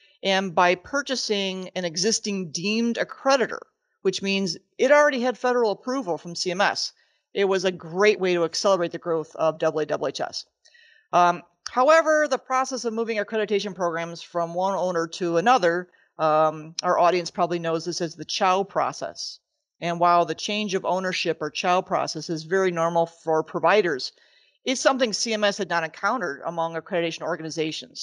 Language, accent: English, American